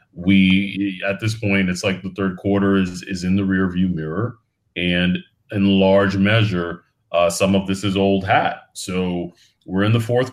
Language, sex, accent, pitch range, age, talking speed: English, male, American, 85-105 Hz, 30-49, 180 wpm